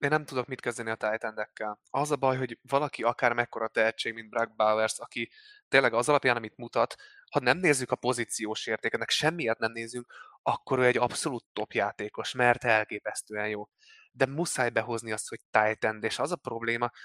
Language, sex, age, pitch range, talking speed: Hungarian, male, 20-39, 110-130 Hz, 180 wpm